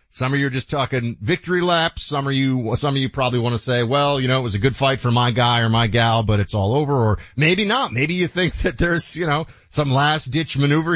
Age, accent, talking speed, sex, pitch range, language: 30-49, American, 275 wpm, male, 110-150 Hz, English